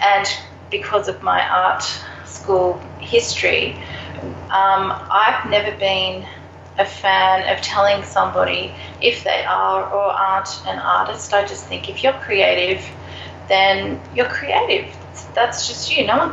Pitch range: 185-225 Hz